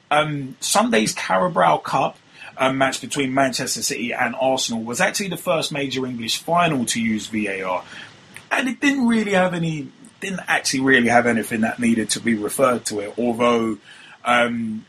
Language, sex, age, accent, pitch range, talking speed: English, male, 20-39, British, 115-150 Hz, 165 wpm